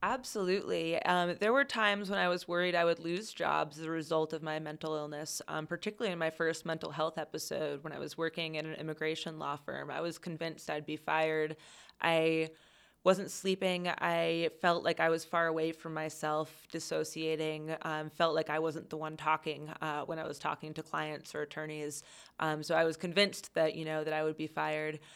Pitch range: 155-170 Hz